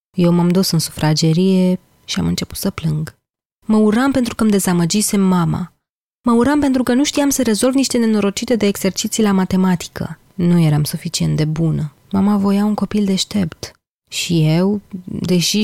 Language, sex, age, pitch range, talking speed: Romanian, female, 20-39, 155-200 Hz, 170 wpm